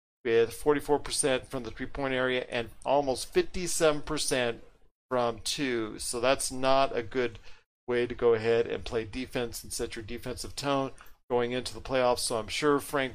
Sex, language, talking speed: male, English, 165 wpm